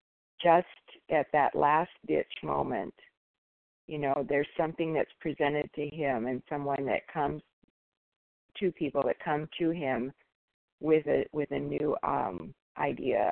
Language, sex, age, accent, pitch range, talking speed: English, female, 50-69, American, 140-160 Hz, 140 wpm